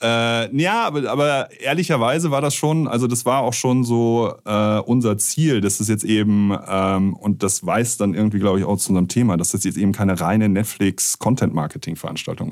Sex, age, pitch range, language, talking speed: male, 30-49, 95-115 Hz, German, 190 wpm